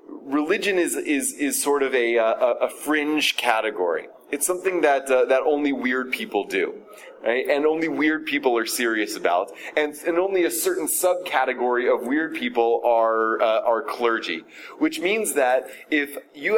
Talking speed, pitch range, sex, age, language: 165 wpm, 130-180 Hz, male, 30-49, English